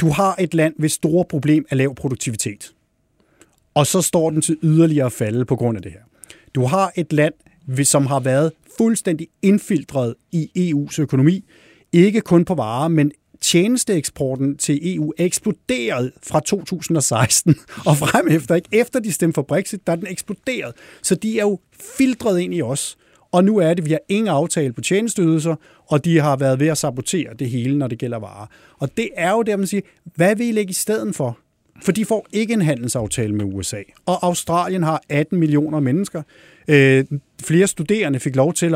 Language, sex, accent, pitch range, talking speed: Danish, male, native, 135-180 Hz, 190 wpm